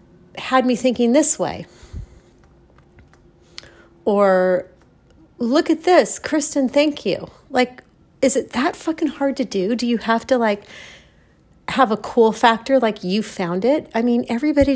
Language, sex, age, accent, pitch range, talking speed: English, female, 40-59, American, 180-250 Hz, 145 wpm